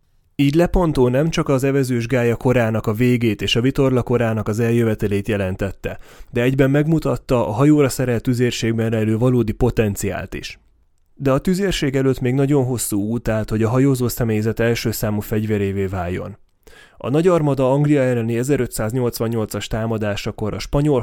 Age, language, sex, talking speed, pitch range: 30-49, Hungarian, male, 150 wpm, 110-135 Hz